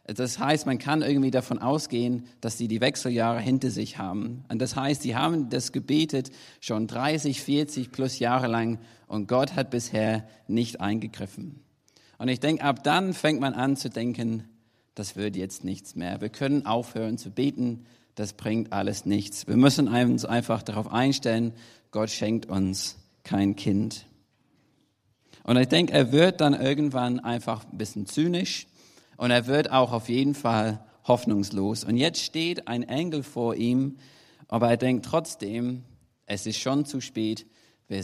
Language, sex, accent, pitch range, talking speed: German, male, German, 110-140 Hz, 165 wpm